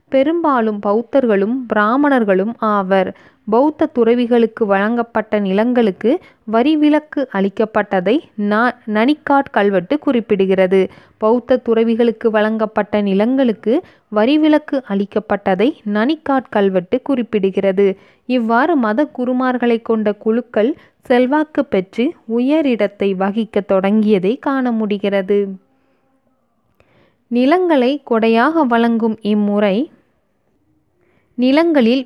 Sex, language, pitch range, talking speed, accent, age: female, Tamil, 205-260 Hz, 75 wpm, native, 20-39